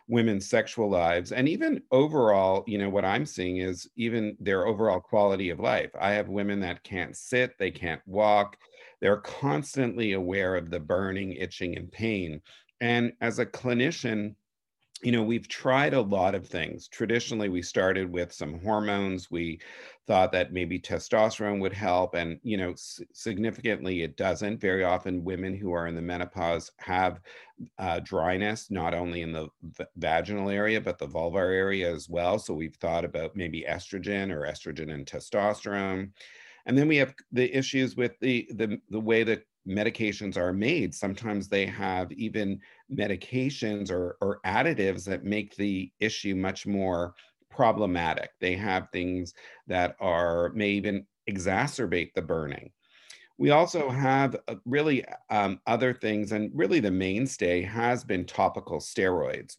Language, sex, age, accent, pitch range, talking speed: English, male, 50-69, American, 90-110 Hz, 155 wpm